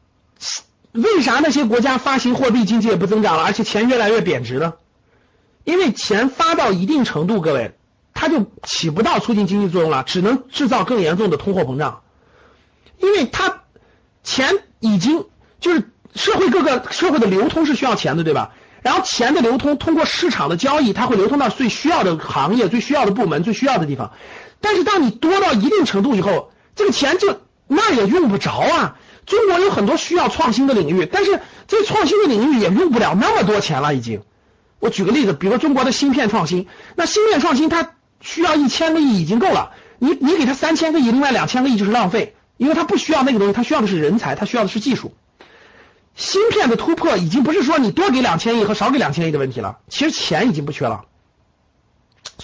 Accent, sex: native, male